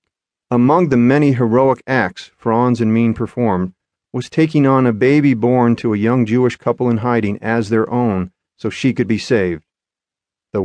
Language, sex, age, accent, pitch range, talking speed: English, male, 40-59, American, 105-125 Hz, 175 wpm